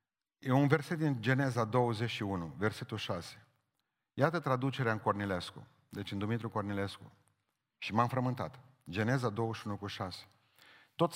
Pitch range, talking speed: 115-145 Hz, 130 wpm